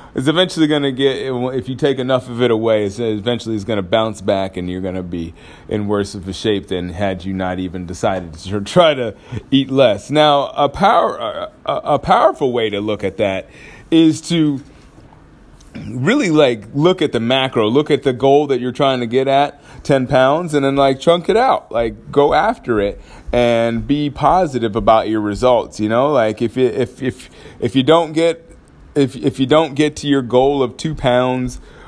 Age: 30-49